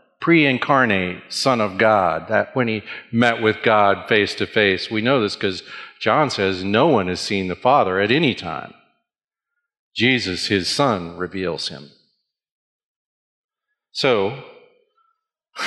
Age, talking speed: 40-59, 130 wpm